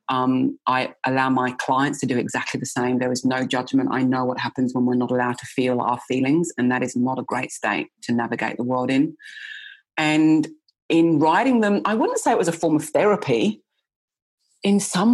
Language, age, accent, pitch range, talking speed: English, 30-49, British, 125-150 Hz, 210 wpm